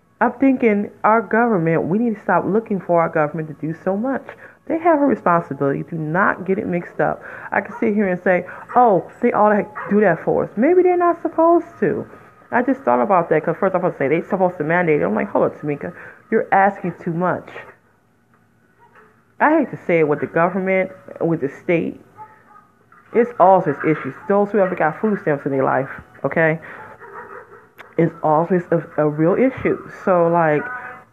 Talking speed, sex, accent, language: 200 wpm, female, American, English